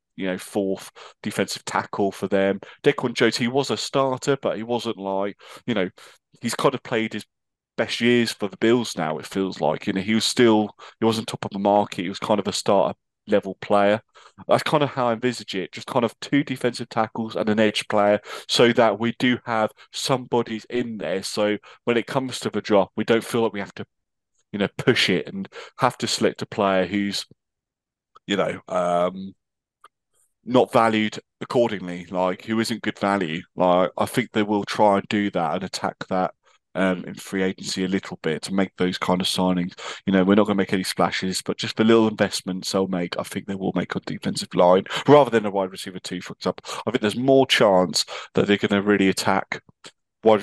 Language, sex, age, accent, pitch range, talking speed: English, male, 30-49, British, 95-115 Hz, 215 wpm